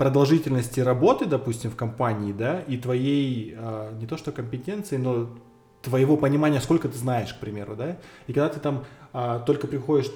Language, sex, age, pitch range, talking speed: Russian, male, 20-39, 125-145 Hz, 170 wpm